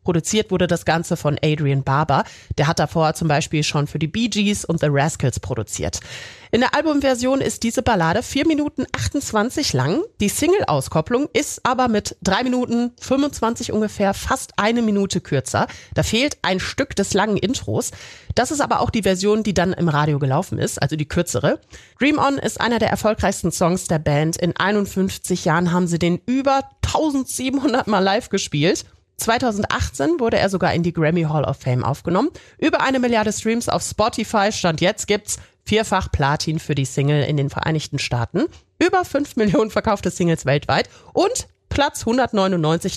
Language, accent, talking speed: German, German, 175 wpm